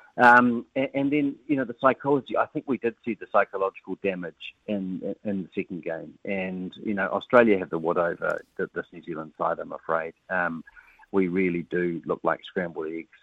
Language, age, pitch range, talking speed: English, 40-59, 90-110 Hz, 200 wpm